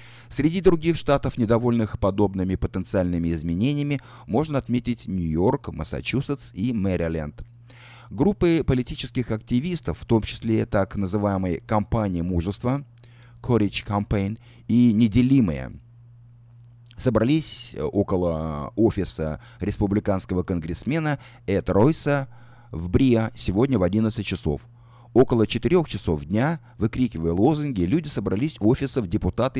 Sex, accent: male, native